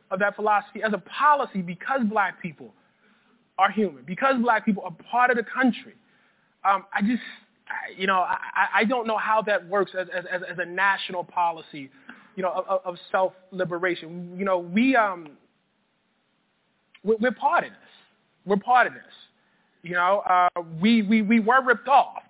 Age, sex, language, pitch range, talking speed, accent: 20-39, male, English, 185-220 Hz, 170 wpm, American